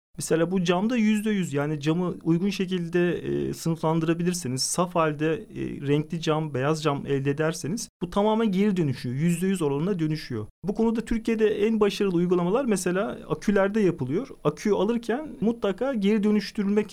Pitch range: 170-225 Hz